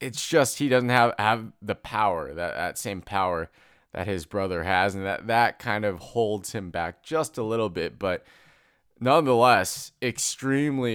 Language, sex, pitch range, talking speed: English, male, 105-130 Hz, 170 wpm